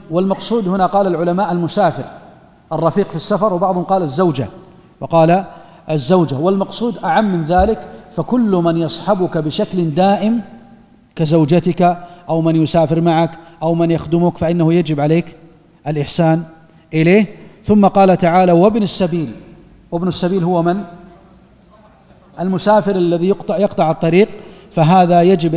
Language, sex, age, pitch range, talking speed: Arabic, male, 40-59, 165-185 Hz, 120 wpm